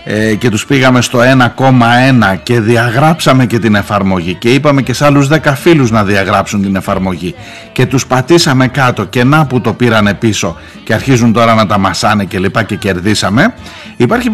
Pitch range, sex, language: 110-170 Hz, male, Greek